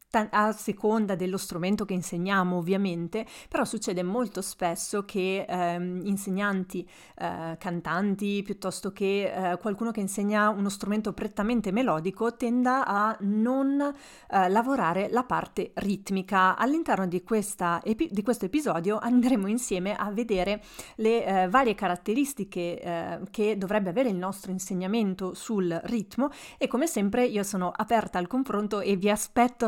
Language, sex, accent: Italian, female, native